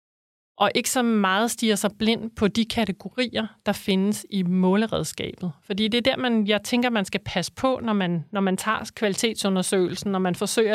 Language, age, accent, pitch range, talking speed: Danish, 30-49, native, 180-215 Hz, 180 wpm